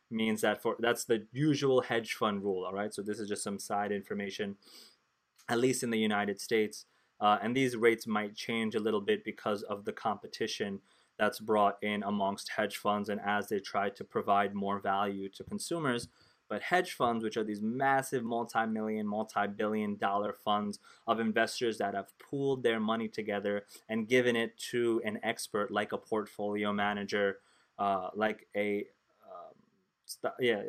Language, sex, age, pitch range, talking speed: English, male, 20-39, 105-120 Hz, 170 wpm